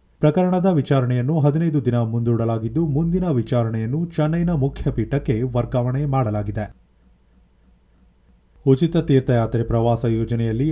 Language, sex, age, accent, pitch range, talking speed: Kannada, male, 30-49, native, 115-150 Hz, 90 wpm